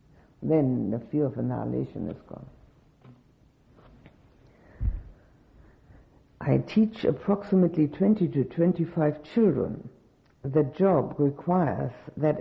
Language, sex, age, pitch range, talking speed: English, female, 60-79, 125-170 Hz, 85 wpm